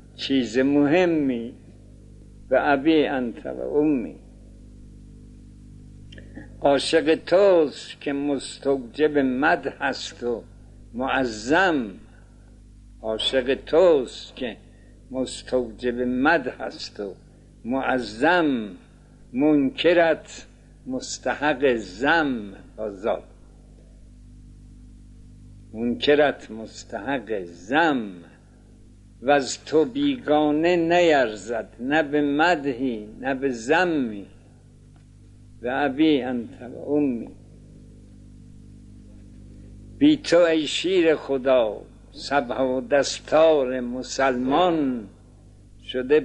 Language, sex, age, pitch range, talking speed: Persian, male, 60-79, 110-140 Hz, 65 wpm